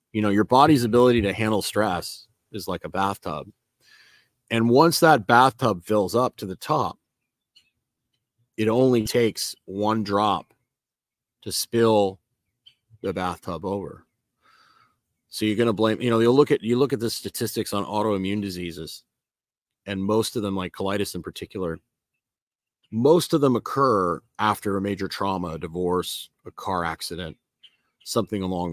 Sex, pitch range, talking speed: male, 95-115 Hz, 150 wpm